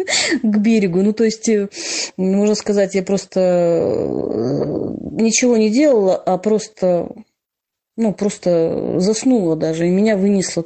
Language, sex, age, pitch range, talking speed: Russian, female, 30-49, 180-230 Hz, 120 wpm